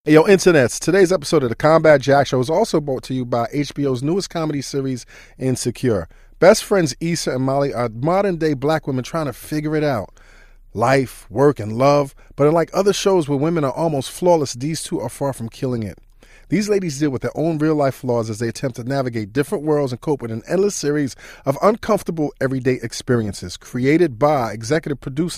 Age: 40-59